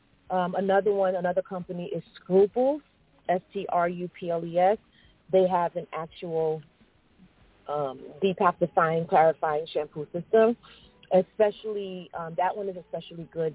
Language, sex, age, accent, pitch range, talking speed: English, female, 40-59, American, 160-195 Hz, 100 wpm